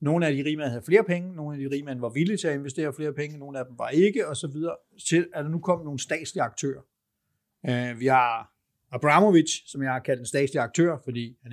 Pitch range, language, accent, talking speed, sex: 130-165 Hz, Danish, native, 250 wpm, male